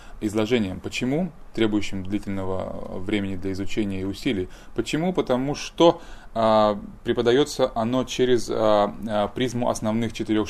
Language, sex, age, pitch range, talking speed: English, male, 20-39, 100-115 Hz, 120 wpm